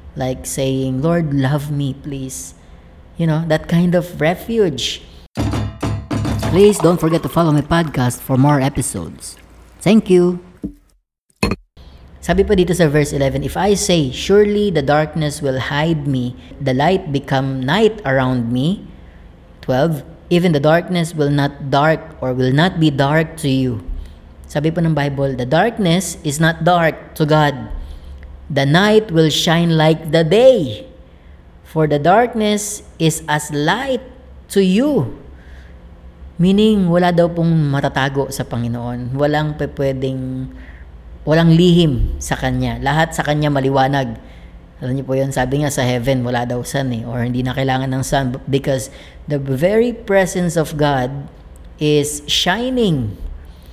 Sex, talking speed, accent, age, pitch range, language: female, 140 wpm, native, 20-39, 125-165 Hz, Filipino